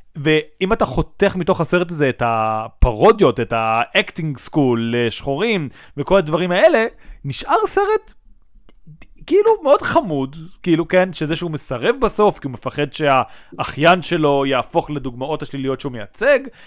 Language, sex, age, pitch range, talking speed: Hebrew, male, 30-49, 140-195 Hz, 130 wpm